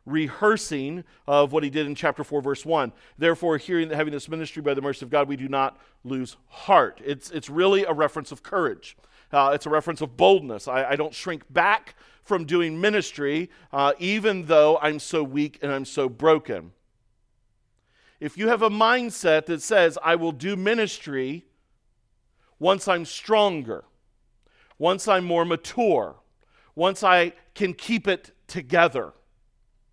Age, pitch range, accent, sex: 40-59, 125-175 Hz, American, male